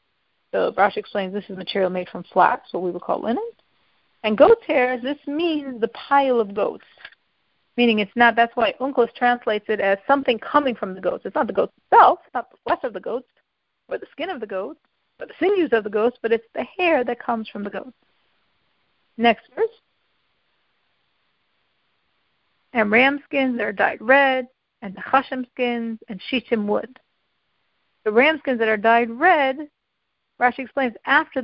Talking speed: 180 wpm